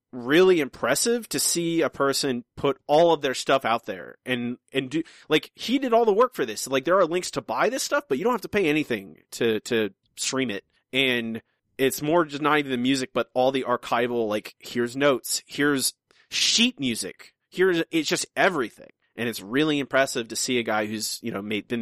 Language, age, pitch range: English, 30-49, 110-140 Hz